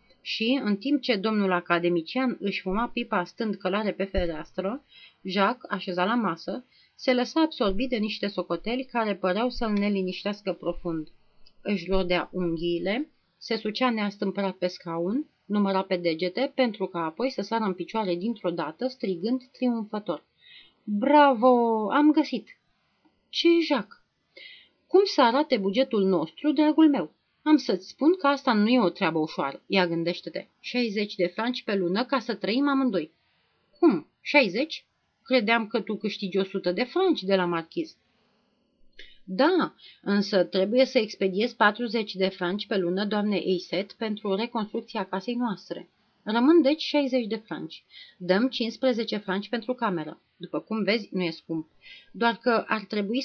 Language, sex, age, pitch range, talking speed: Romanian, female, 30-49, 185-255 Hz, 150 wpm